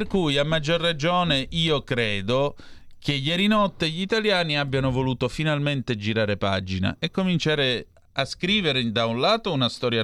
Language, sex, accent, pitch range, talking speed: Italian, male, native, 105-140 Hz, 155 wpm